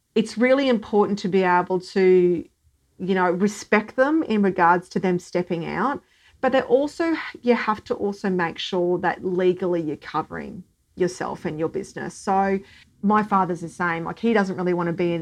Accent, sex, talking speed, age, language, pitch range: Australian, female, 185 wpm, 40-59, English, 170-205 Hz